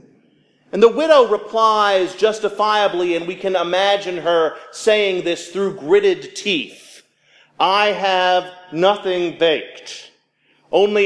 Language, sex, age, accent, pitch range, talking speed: English, male, 40-59, American, 145-195 Hz, 110 wpm